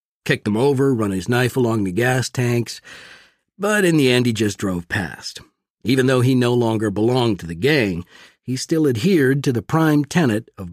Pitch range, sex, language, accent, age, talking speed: 110-140 Hz, male, English, American, 50-69, 195 wpm